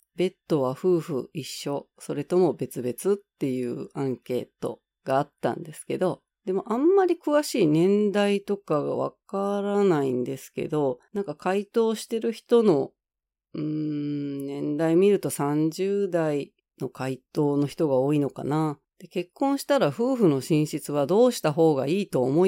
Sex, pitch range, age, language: female, 135-210 Hz, 40-59, Japanese